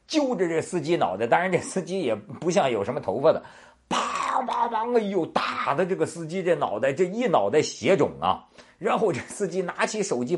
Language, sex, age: Chinese, male, 50-69